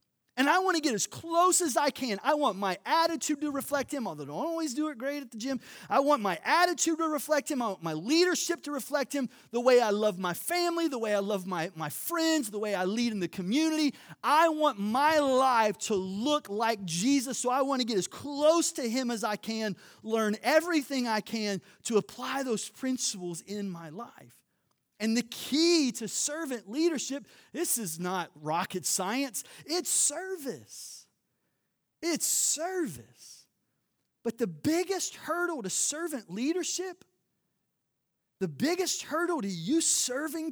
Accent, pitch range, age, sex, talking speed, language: American, 205-300 Hz, 30-49, male, 180 wpm, English